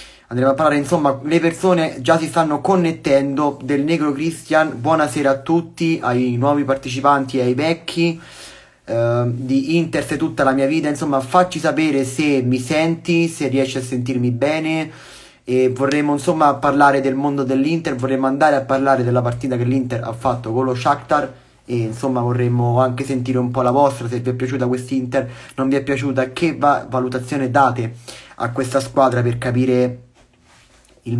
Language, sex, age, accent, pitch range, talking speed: Italian, male, 30-49, native, 125-150 Hz, 175 wpm